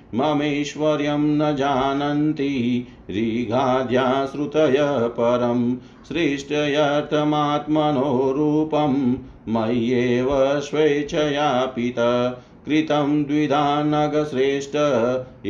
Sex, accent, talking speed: male, native, 40 wpm